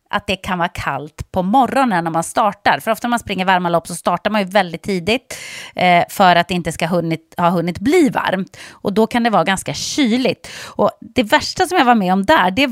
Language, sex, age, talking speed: English, female, 30-49, 235 wpm